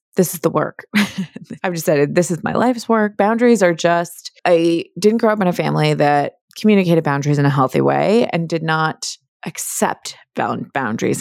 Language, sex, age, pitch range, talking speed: English, female, 20-39, 165-215 Hz, 175 wpm